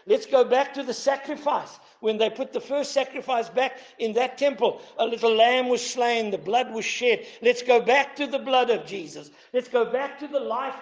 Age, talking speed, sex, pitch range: 60-79, 215 wpm, male, 225-290 Hz